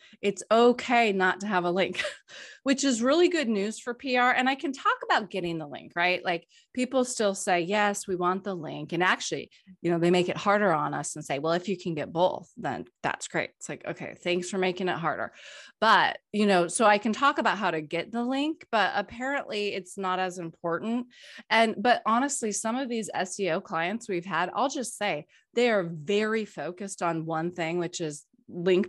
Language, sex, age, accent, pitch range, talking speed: English, female, 20-39, American, 180-230 Hz, 215 wpm